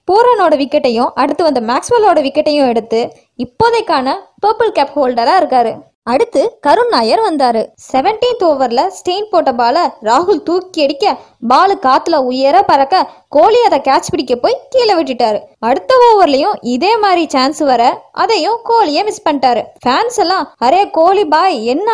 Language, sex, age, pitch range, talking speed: Tamil, female, 20-39, 270-405 Hz, 45 wpm